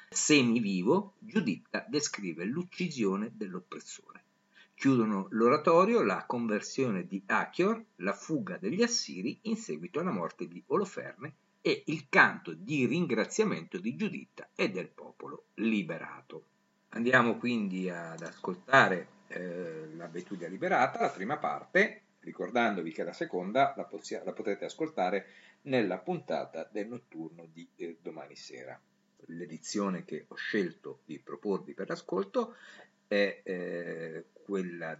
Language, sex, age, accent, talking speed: Italian, male, 50-69, native, 120 wpm